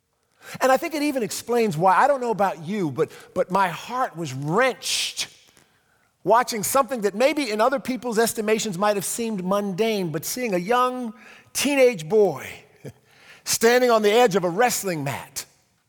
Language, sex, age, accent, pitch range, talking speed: English, male, 50-69, American, 185-245 Hz, 165 wpm